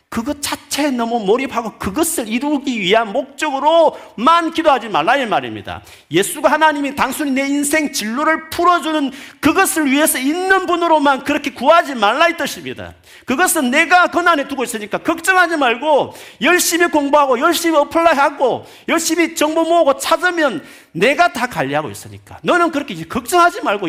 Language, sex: Korean, male